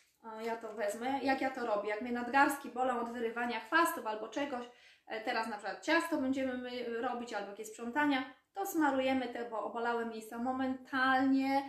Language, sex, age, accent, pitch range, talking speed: Polish, female, 20-39, native, 225-275 Hz, 165 wpm